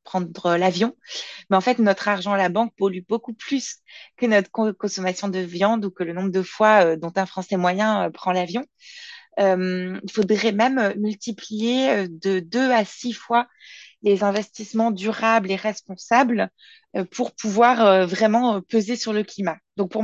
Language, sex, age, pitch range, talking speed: French, female, 20-39, 195-230 Hz, 175 wpm